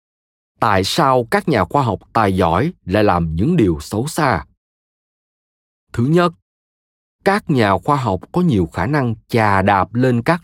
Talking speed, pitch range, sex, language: 160 wpm, 90-140 Hz, male, Vietnamese